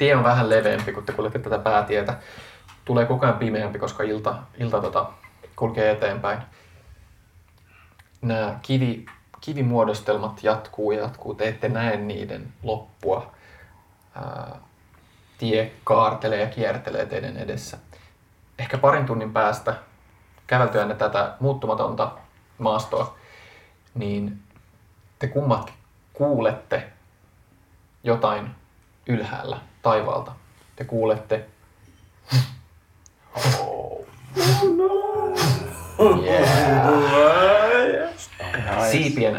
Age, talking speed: 20-39, 85 wpm